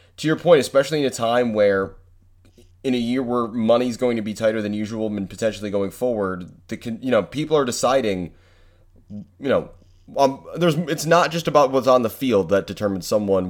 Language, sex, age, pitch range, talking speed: English, male, 30-49, 95-120 Hz, 195 wpm